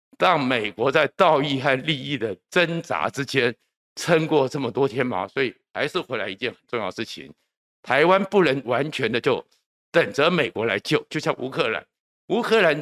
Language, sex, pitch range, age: Chinese, male, 125-160 Hz, 50-69